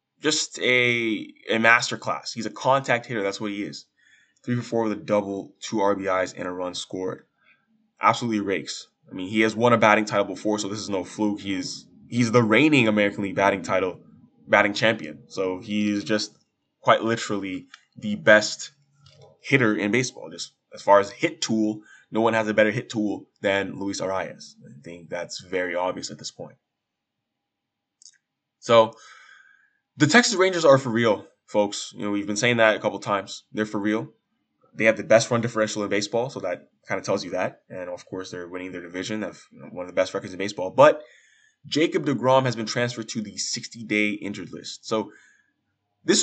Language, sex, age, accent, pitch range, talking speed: English, male, 20-39, American, 100-125 Hz, 195 wpm